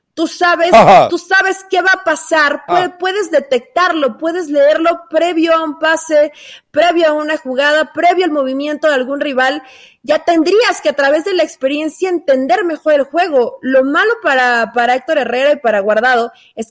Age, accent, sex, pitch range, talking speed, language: 30-49, Mexican, female, 235-310 Hz, 170 wpm, Spanish